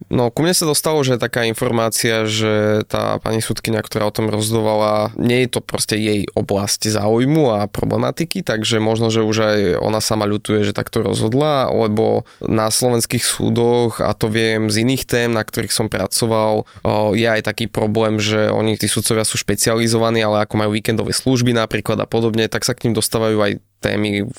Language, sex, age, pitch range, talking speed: Slovak, male, 20-39, 105-120 Hz, 190 wpm